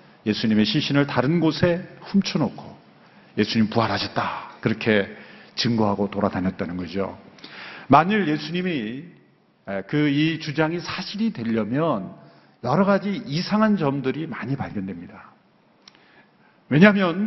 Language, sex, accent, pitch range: Korean, male, native, 130-170 Hz